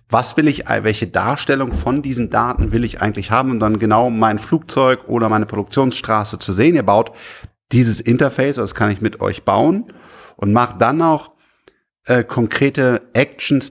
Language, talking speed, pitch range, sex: German, 170 wpm, 110-135 Hz, male